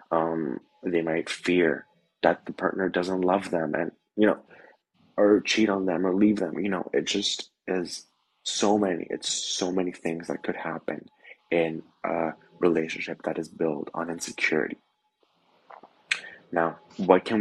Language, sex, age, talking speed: English, male, 20-39, 155 wpm